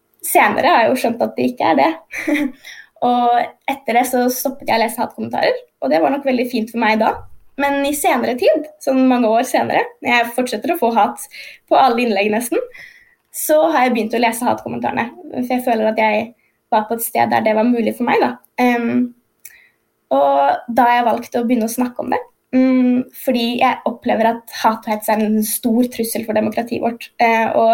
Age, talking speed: 20-39, 205 wpm